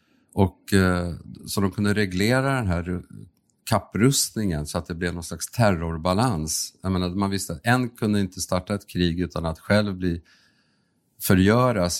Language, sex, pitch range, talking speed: Swedish, male, 90-110 Hz, 155 wpm